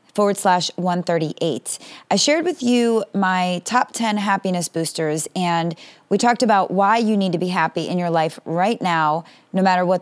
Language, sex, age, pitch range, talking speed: English, female, 30-49, 175-220 Hz, 180 wpm